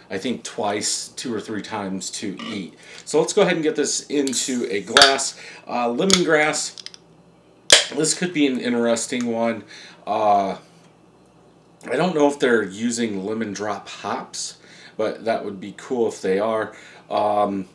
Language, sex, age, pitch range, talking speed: English, male, 30-49, 105-140 Hz, 155 wpm